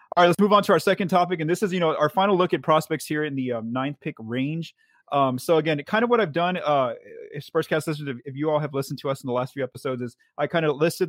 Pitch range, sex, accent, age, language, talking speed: 125-155 Hz, male, American, 30-49, English, 305 wpm